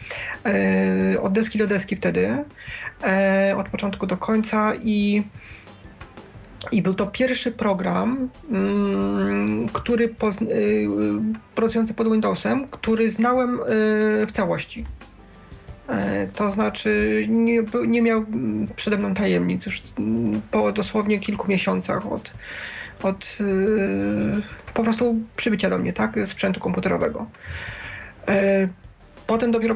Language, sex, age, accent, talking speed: Polish, male, 30-49, native, 100 wpm